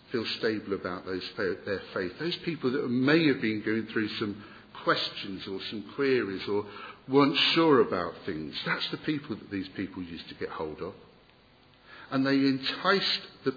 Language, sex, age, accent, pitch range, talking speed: English, male, 50-69, British, 115-160 Hz, 175 wpm